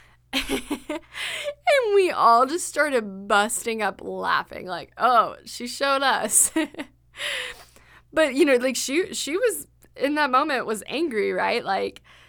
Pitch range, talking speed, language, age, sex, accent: 185-260 Hz, 130 wpm, English, 20-39, female, American